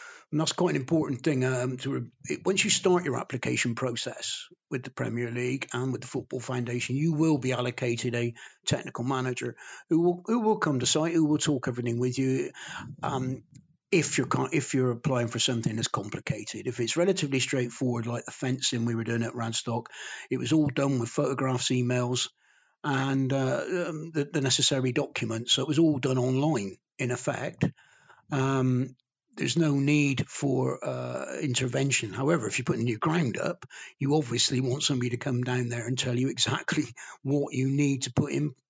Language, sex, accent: English, male, British